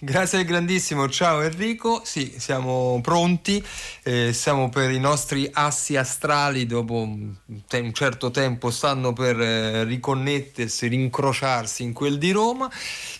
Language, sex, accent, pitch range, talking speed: Italian, male, native, 110-140 Hz, 130 wpm